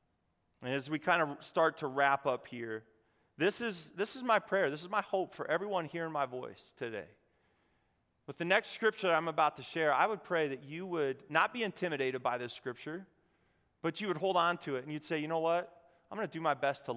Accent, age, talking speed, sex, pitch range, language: American, 30-49, 235 wpm, male, 150-215 Hz, English